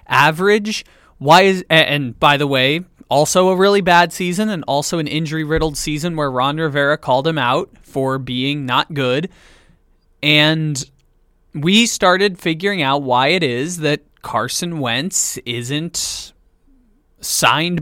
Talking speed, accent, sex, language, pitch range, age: 140 wpm, American, male, English, 135-180 Hz, 20-39